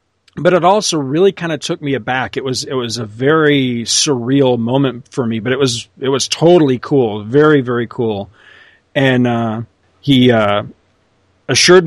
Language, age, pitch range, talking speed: English, 40-59, 120-150 Hz, 170 wpm